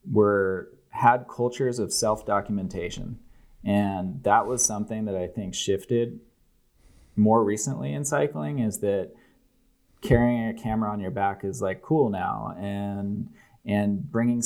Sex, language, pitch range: male, English, 95-110 Hz